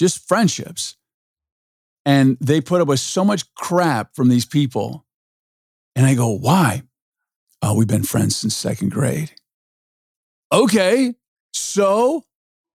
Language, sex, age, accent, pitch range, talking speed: English, male, 40-59, American, 115-155 Hz, 120 wpm